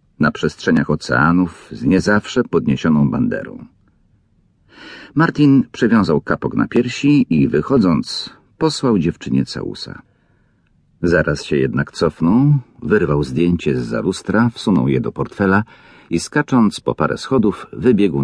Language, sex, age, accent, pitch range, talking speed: Polish, male, 50-69, native, 75-110 Hz, 120 wpm